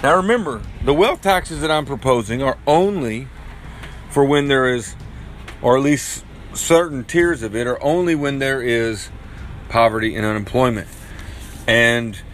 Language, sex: English, male